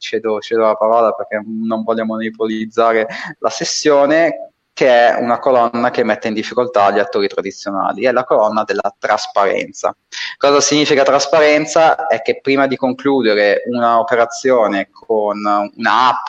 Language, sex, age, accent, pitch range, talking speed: Italian, male, 20-39, native, 105-130 Hz, 140 wpm